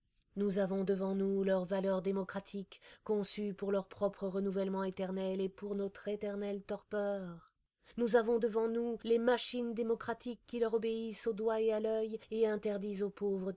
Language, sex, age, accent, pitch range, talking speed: French, female, 30-49, French, 180-220 Hz, 165 wpm